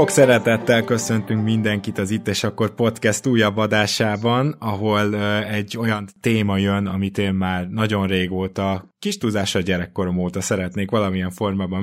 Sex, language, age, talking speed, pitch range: male, Hungarian, 20-39, 140 wpm, 90-110 Hz